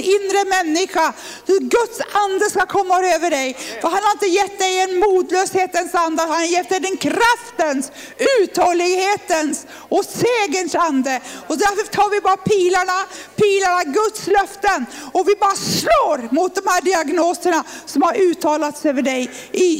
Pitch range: 280-380 Hz